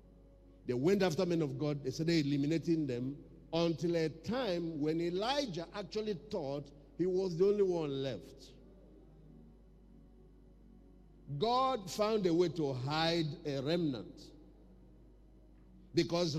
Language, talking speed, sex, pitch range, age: English, 115 wpm, male, 150-210 Hz, 50-69